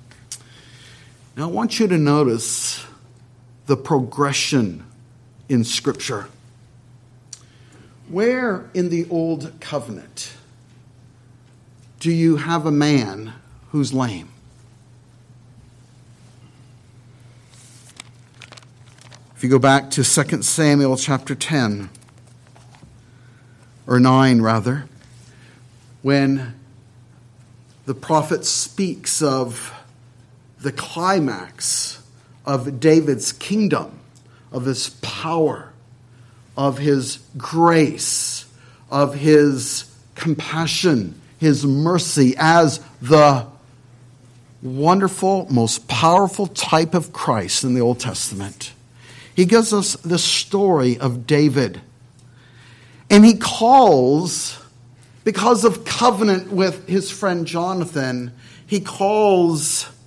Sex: male